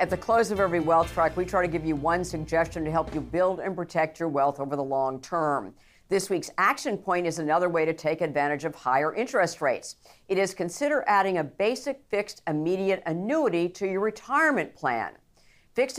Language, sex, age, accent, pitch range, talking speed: English, female, 50-69, American, 155-185 Hz, 205 wpm